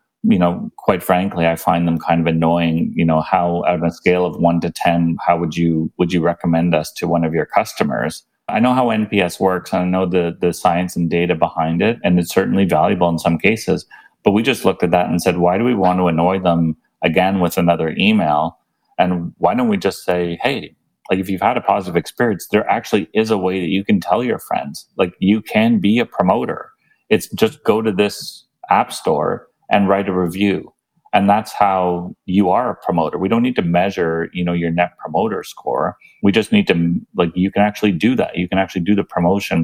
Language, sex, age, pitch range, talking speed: English, male, 30-49, 85-100 Hz, 225 wpm